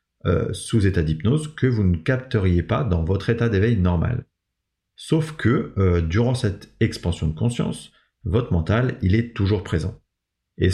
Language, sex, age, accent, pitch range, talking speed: French, male, 30-49, French, 90-125 Hz, 160 wpm